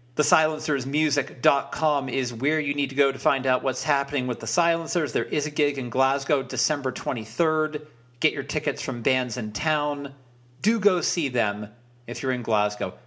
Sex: male